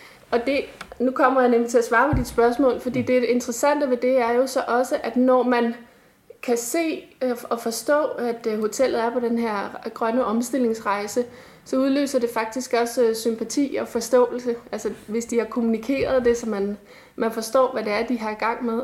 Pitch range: 220-255 Hz